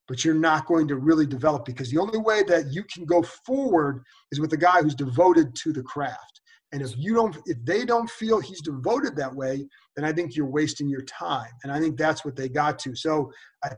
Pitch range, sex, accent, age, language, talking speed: 145-180 Hz, male, American, 40-59, English, 235 wpm